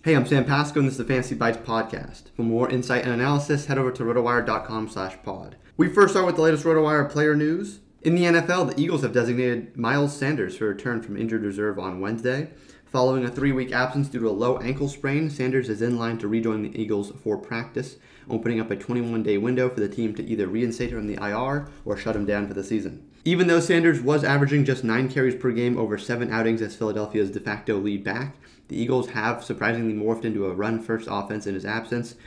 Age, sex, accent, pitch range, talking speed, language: 30-49, male, American, 105-130 Hz, 225 wpm, English